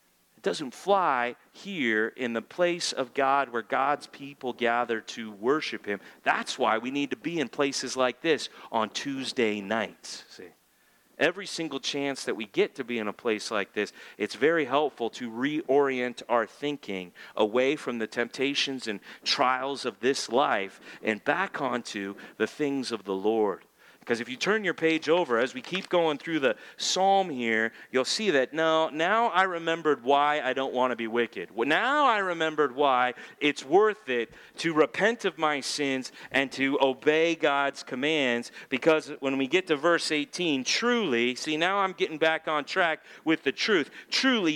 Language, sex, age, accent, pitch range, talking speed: English, male, 40-59, American, 125-170 Hz, 175 wpm